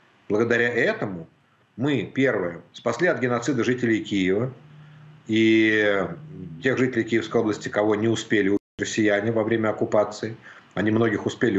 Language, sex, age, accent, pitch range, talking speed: Ukrainian, male, 50-69, native, 105-130 Hz, 130 wpm